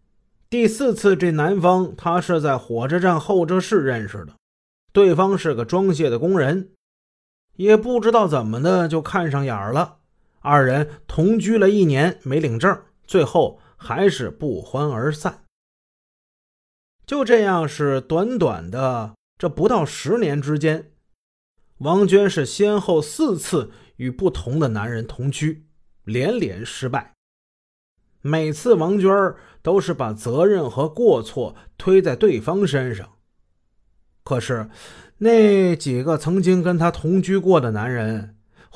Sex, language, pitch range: male, Chinese, 115-185 Hz